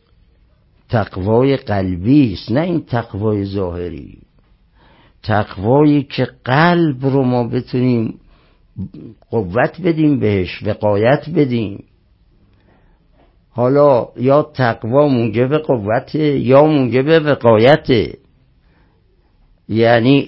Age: 60-79